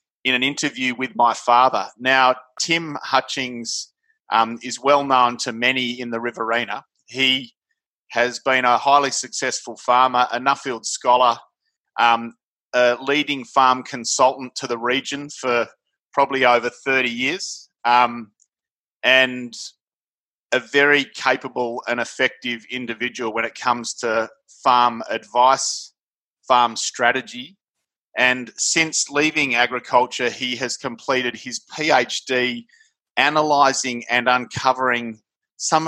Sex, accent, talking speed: male, Australian, 115 wpm